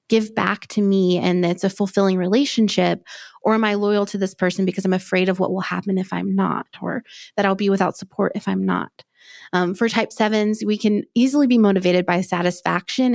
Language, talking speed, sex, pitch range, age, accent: English, 210 wpm, female, 195-225 Hz, 20-39, American